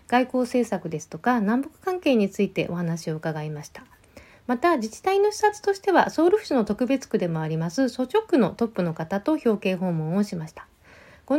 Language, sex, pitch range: Japanese, female, 180-285 Hz